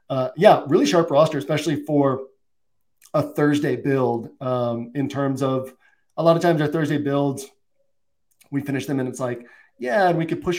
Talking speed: 180 wpm